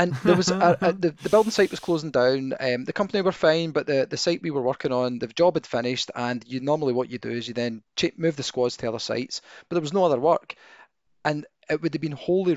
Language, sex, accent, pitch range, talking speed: English, male, British, 120-165 Hz, 265 wpm